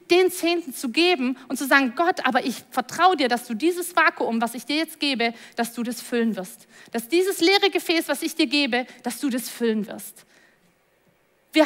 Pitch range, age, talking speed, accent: 235-345 Hz, 30-49, 205 wpm, German